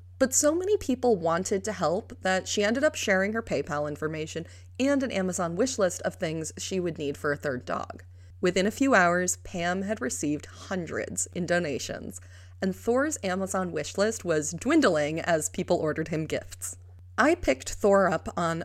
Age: 30-49